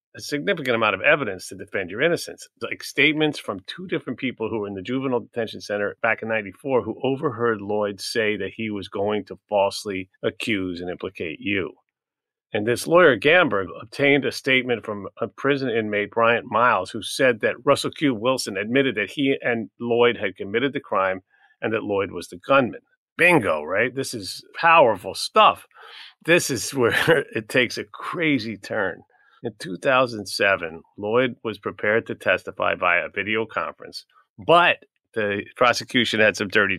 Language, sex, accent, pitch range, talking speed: English, male, American, 105-135 Hz, 170 wpm